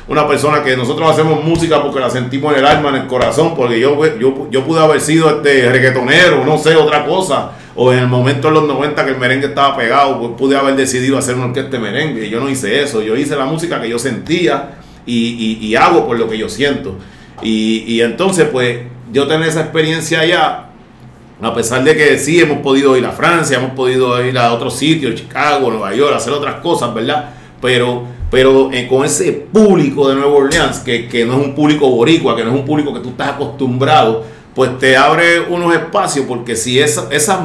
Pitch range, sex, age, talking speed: 125-155 Hz, male, 40-59, 215 wpm